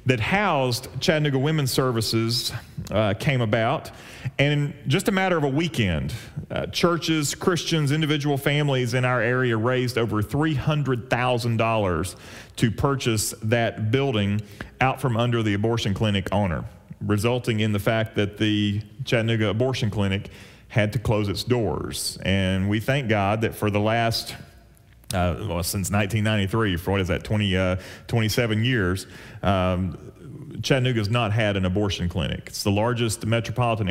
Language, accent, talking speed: English, American, 145 wpm